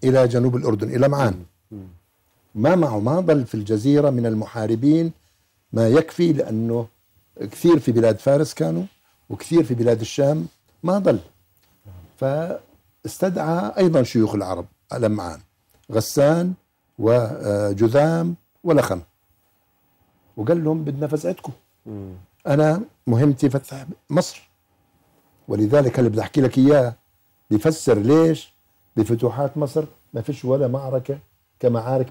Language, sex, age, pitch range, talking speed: Arabic, male, 60-79, 100-140 Hz, 110 wpm